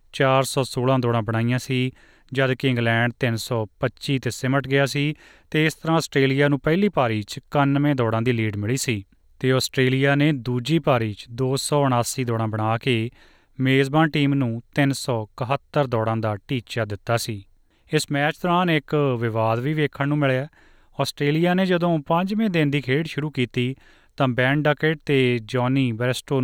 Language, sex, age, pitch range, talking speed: Punjabi, male, 30-49, 115-145 Hz, 155 wpm